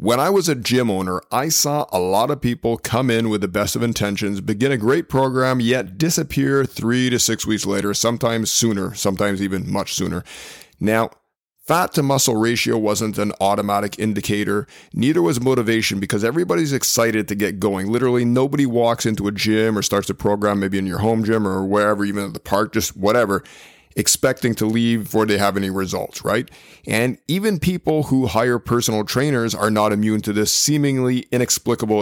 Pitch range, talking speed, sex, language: 105-130 Hz, 185 wpm, male, English